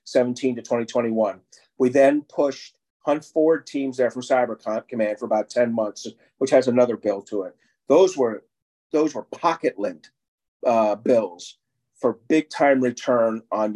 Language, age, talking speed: English, 40-59, 155 wpm